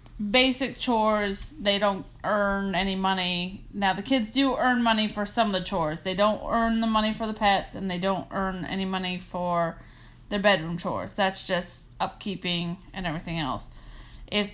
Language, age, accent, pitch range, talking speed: English, 30-49, American, 170-205 Hz, 180 wpm